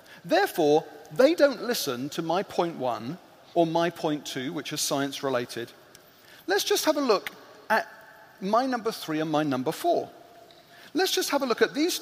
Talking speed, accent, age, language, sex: 175 wpm, British, 40-59, English, male